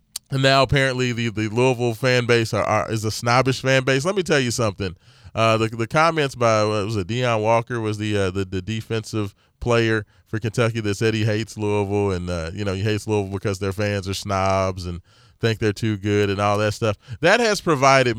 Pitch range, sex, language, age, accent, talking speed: 105-130 Hz, male, English, 20-39, American, 220 wpm